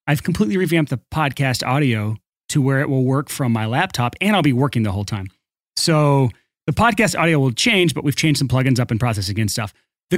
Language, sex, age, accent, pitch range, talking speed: English, male, 30-49, American, 135-175 Hz, 225 wpm